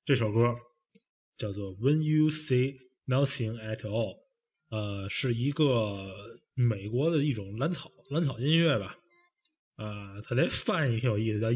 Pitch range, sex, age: 110-160 Hz, male, 20-39